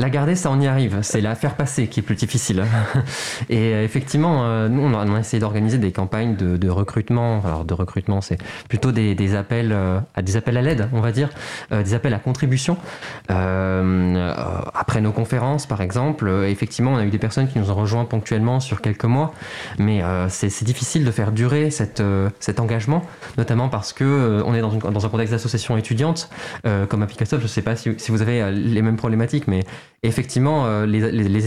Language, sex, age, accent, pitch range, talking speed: French, male, 20-39, French, 105-130 Hz, 225 wpm